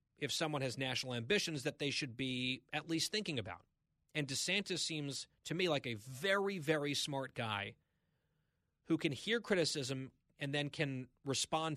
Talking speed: 165 wpm